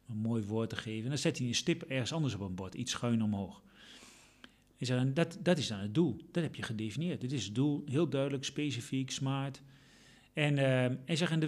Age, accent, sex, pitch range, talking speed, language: 40-59, Dutch, male, 115-150 Hz, 230 wpm, Dutch